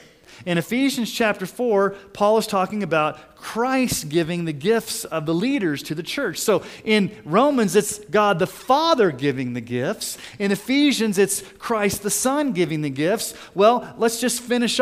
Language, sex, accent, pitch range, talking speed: English, male, American, 145-220 Hz, 165 wpm